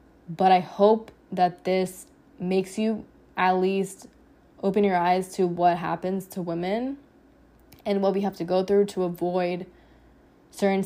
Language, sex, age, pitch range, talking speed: English, female, 10-29, 180-195 Hz, 150 wpm